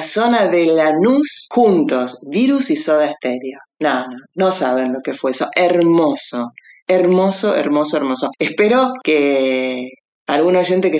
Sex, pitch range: female, 145-210 Hz